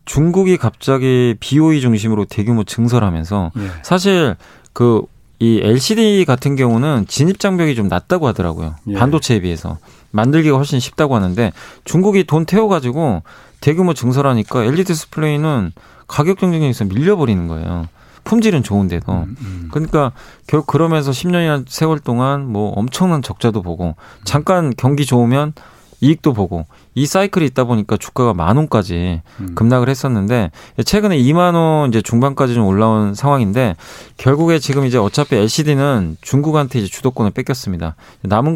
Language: Korean